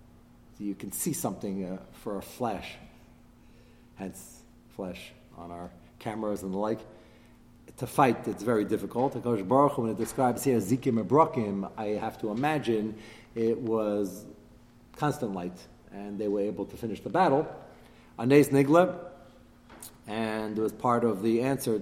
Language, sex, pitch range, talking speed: English, male, 110-155 Hz, 155 wpm